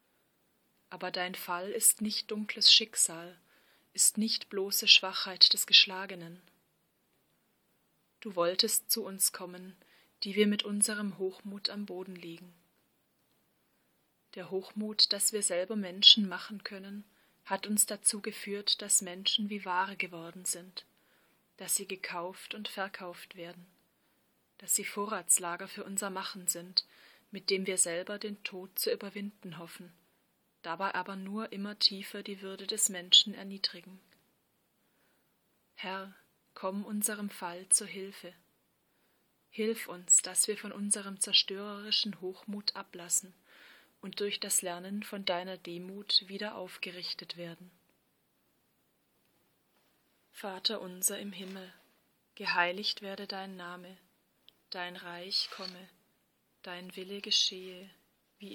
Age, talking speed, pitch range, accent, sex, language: 30-49, 120 wpm, 180-205 Hz, German, female, German